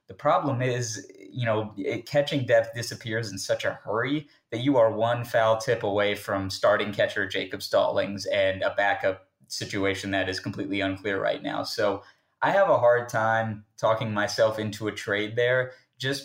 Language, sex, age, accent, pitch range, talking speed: English, male, 20-39, American, 100-125 Hz, 175 wpm